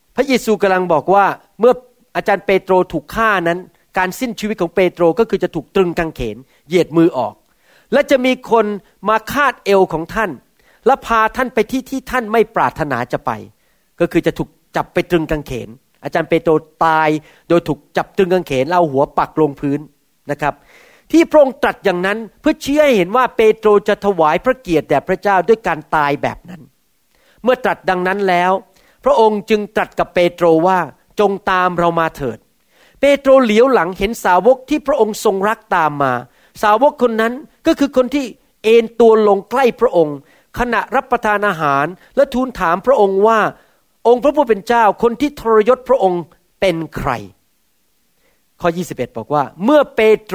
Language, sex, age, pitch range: Thai, male, 40-59, 165-235 Hz